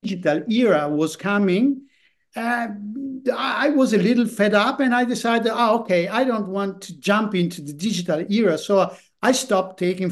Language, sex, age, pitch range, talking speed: English, male, 50-69, 160-205 Hz, 165 wpm